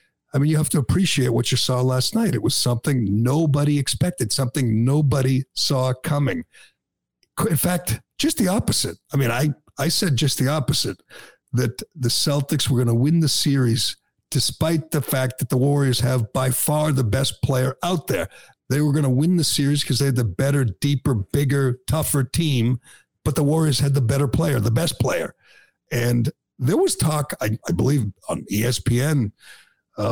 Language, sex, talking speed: English, male, 185 wpm